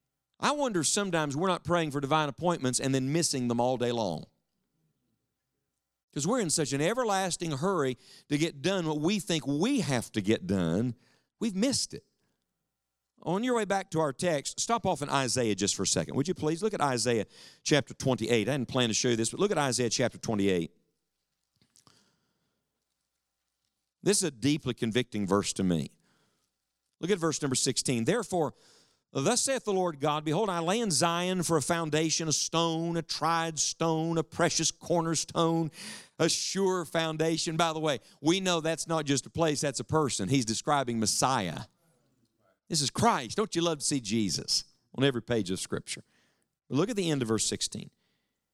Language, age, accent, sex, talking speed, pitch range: English, 50-69, American, male, 185 wpm, 120-170 Hz